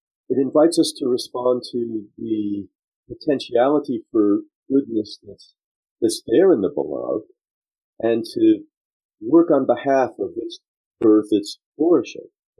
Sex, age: male, 50-69